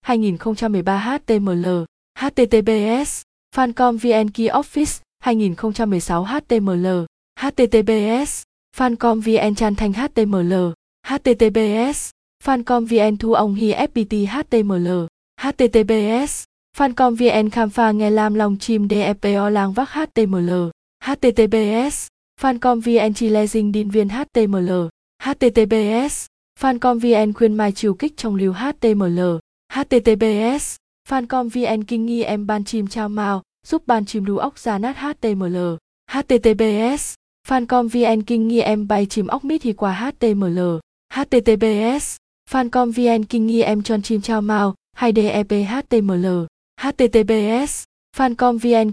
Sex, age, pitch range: female, 20-39, 210-245 Hz